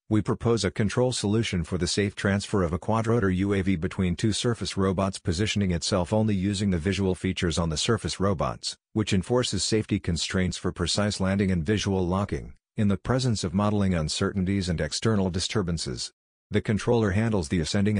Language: English